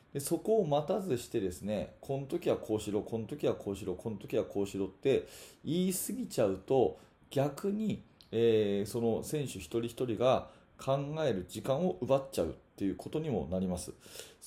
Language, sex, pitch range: Japanese, male, 110-165 Hz